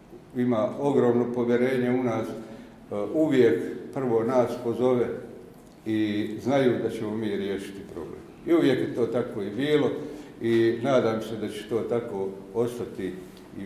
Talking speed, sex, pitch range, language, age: 145 wpm, male, 105-120 Hz, Croatian, 60-79